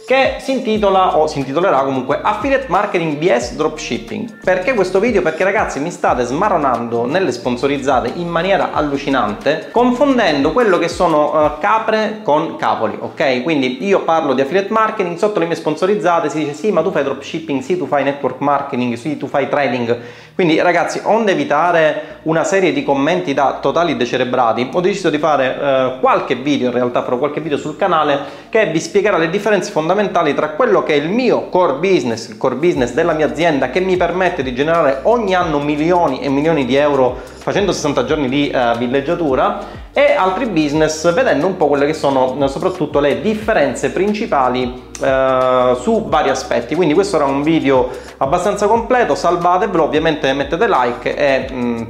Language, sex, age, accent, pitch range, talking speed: Italian, male, 30-49, native, 140-195 Hz, 175 wpm